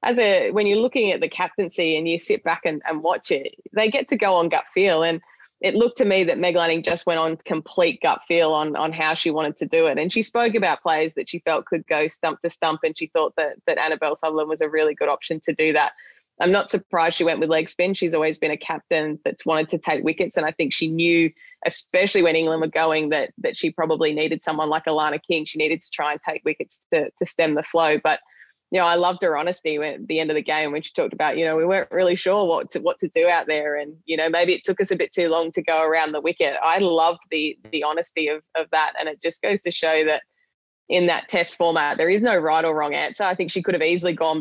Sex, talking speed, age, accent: female, 275 wpm, 20-39, Australian